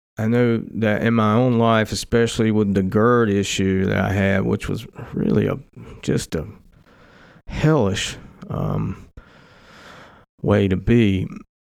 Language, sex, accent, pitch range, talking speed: English, male, American, 100-110 Hz, 135 wpm